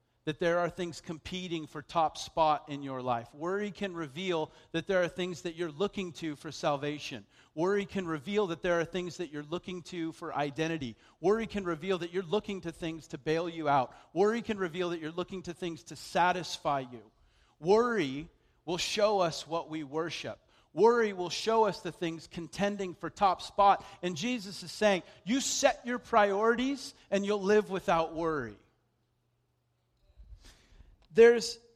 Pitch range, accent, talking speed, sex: 155-195 Hz, American, 170 wpm, male